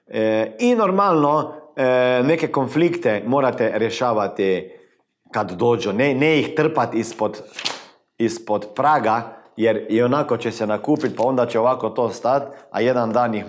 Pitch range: 105-140 Hz